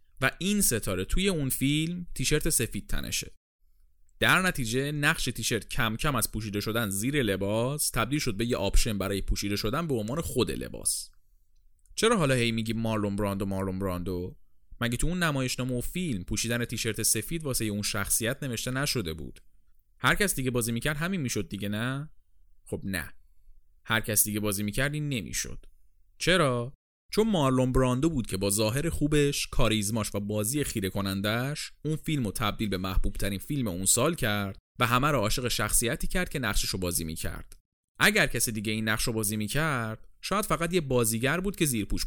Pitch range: 100-140 Hz